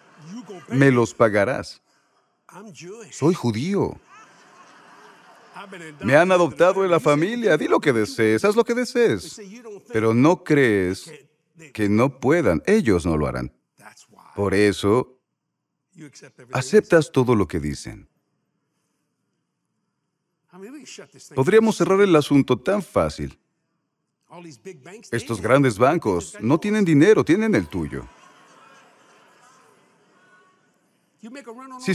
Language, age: Spanish, 40-59